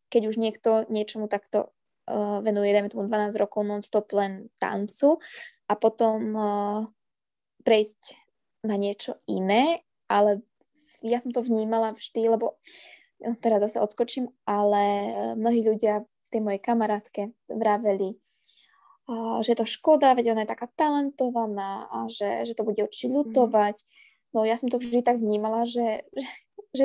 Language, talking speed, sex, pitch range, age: Slovak, 150 wpm, female, 210-245 Hz, 20-39